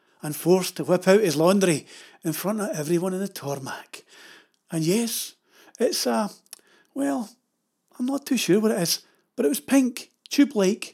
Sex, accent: male, British